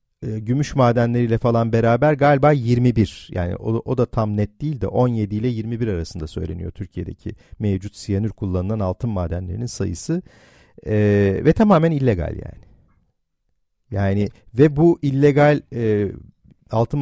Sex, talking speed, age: male, 130 wpm, 50-69